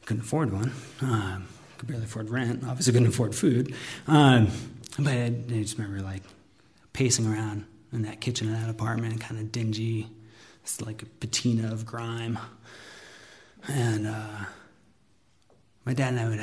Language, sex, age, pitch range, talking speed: English, male, 30-49, 110-125 Hz, 155 wpm